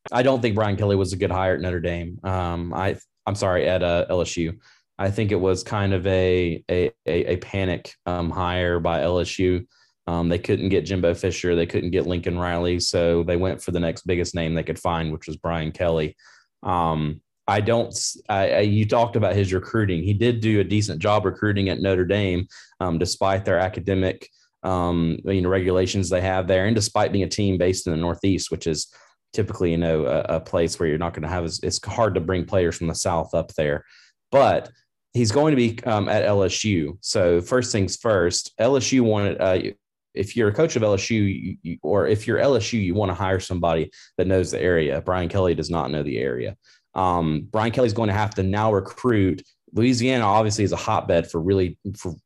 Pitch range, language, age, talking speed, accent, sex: 85-105 Hz, English, 30-49, 215 wpm, American, male